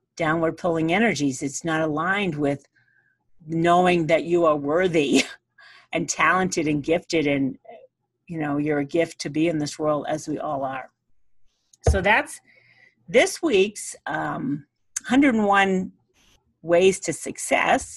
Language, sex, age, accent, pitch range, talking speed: English, female, 50-69, American, 155-215 Hz, 135 wpm